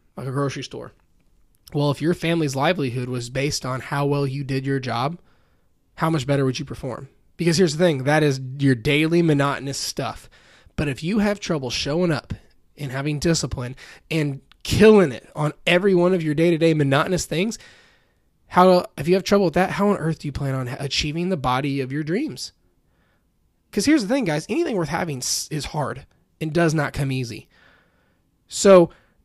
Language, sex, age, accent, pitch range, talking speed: English, male, 20-39, American, 135-185 Hz, 185 wpm